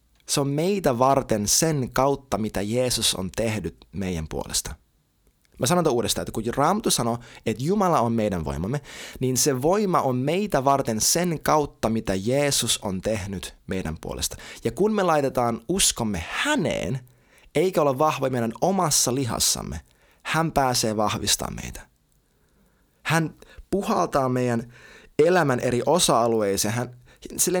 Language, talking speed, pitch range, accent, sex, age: Finnish, 135 wpm, 110-160 Hz, native, male, 20-39